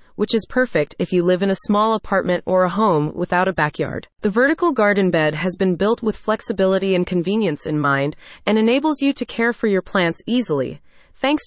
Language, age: English, 30-49